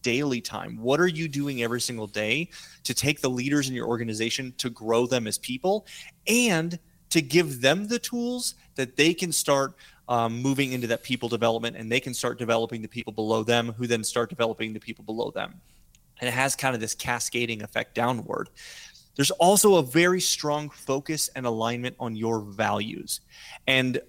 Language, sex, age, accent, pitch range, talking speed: English, male, 30-49, American, 115-150 Hz, 185 wpm